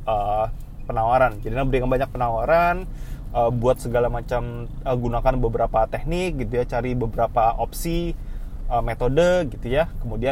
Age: 20-39